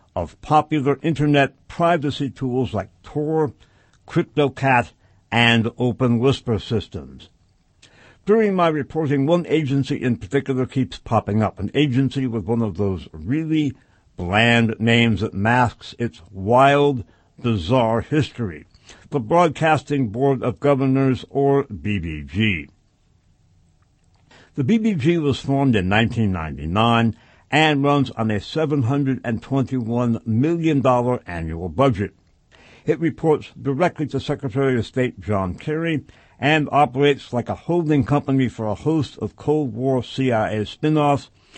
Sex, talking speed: male, 115 wpm